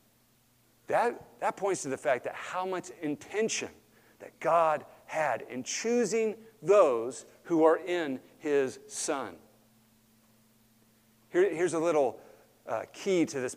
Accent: American